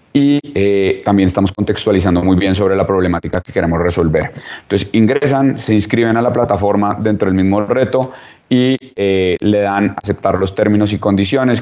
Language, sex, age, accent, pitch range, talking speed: Spanish, male, 30-49, Colombian, 90-105 Hz, 170 wpm